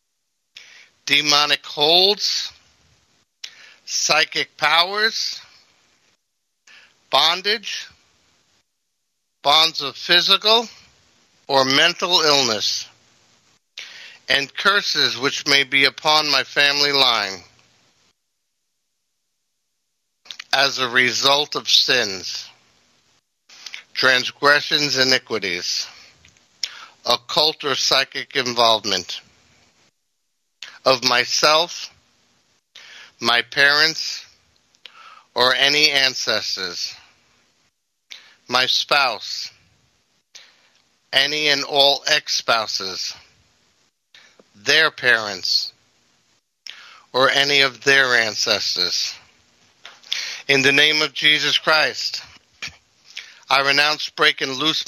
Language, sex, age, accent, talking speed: English, male, 60-79, American, 70 wpm